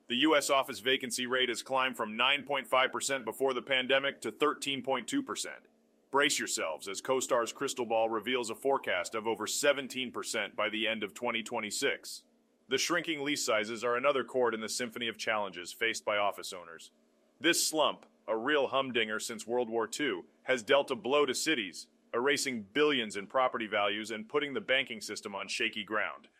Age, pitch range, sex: 30-49, 115-140 Hz, male